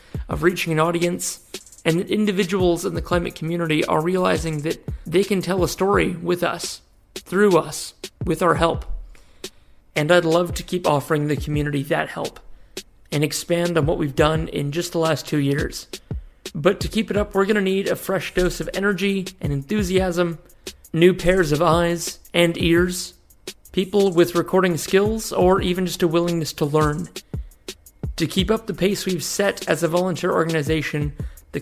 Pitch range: 160-185 Hz